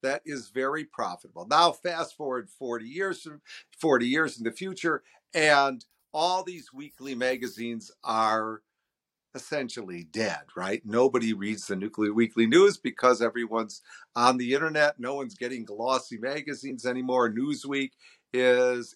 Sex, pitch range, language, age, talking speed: male, 110-140 Hz, English, 50-69, 135 wpm